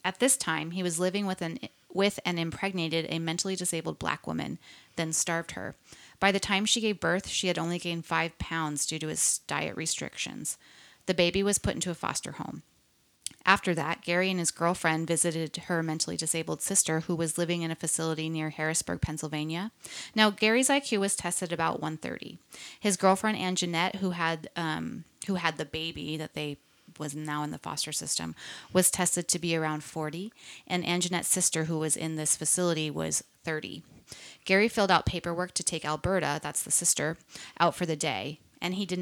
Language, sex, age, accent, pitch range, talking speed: English, female, 30-49, American, 155-185 Hz, 190 wpm